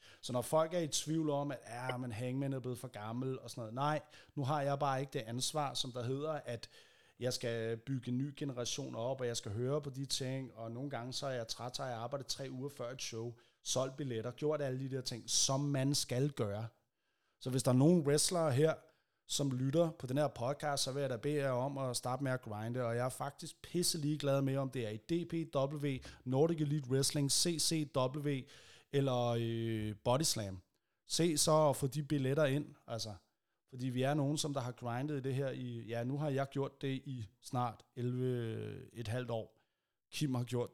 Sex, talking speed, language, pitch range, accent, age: male, 215 wpm, Danish, 120-145 Hz, native, 30-49